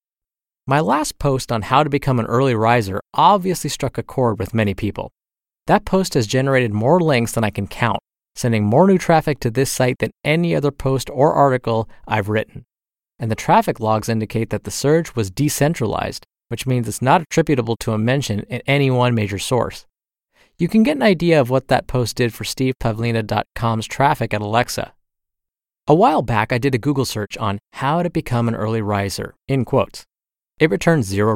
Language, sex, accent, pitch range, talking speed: English, male, American, 110-150 Hz, 190 wpm